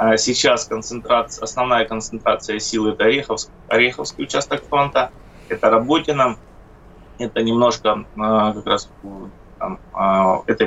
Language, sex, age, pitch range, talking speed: Russian, male, 20-39, 100-120 Hz, 85 wpm